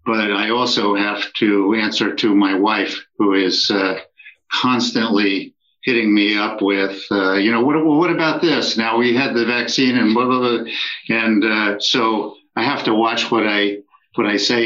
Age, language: 50-69, English